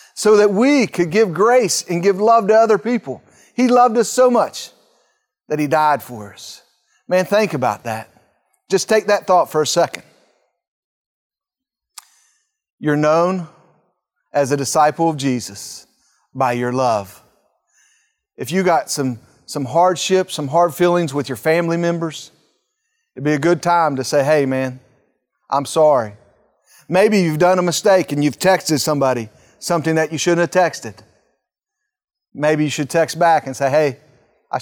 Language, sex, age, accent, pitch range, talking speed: English, male, 40-59, American, 140-185 Hz, 160 wpm